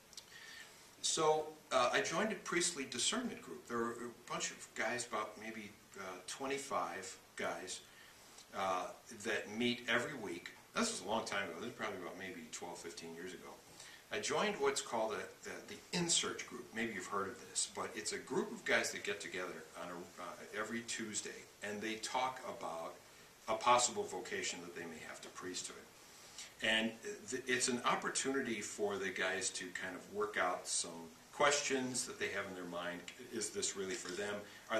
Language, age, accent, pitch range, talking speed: English, 60-79, American, 105-135 Hz, 185 wpm